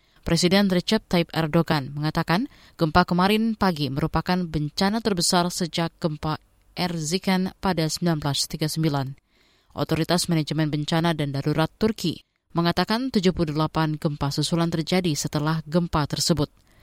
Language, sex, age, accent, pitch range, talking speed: Indonesian, female, 20-39, native, 150-185 Hz, 105 wpm